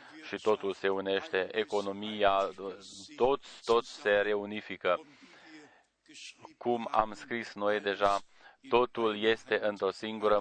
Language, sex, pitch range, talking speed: Romanian, male, 100-115 Hz, 105 wpm